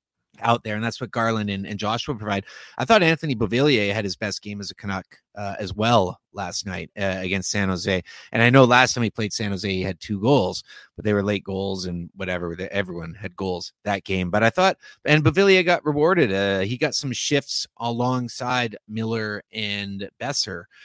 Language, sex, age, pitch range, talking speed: English, male, 30-49, 100-125 Hz, 205 wpm